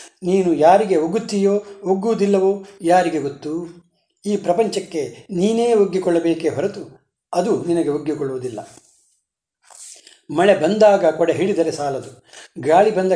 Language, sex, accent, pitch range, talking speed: Kannada, male, native, 165-205 Hz, 95 wpm